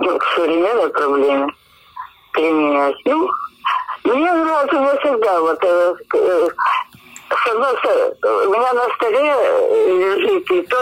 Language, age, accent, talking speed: Ukrainian, 50-69, American, 120 wpm